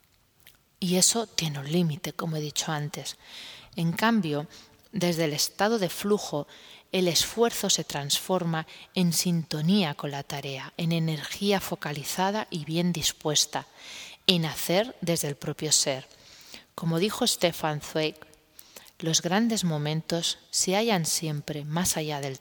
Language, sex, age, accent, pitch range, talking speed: Spanish, female, 20-39, Spanish, 155-185 Hz, 135 wpm